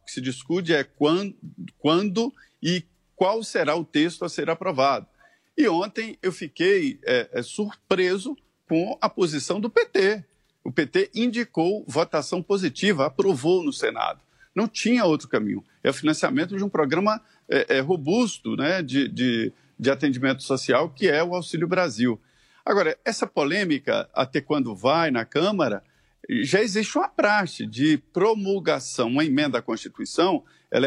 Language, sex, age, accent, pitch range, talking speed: Portuguese, male, 50-69, Brazilian, 150-215 Hz, 140 wpm